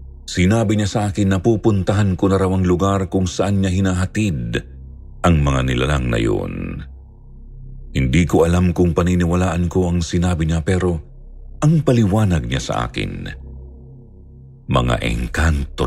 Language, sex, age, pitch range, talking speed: Filipino, male, 50-69, 65-95 Hz, 140 wpm